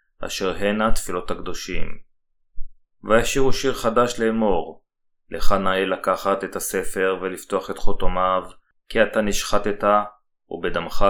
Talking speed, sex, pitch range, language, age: 110 wpm, male, 95-105 Hz, Hebrew, 20-39